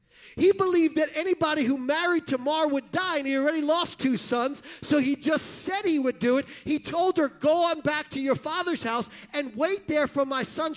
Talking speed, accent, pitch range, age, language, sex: 215 wpm, American, 210-310 Hz, 40-59, English, male